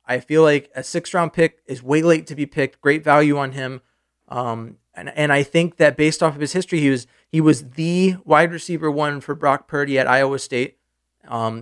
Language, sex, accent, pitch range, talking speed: English, male, American, 130-160 Hz, 220 wpm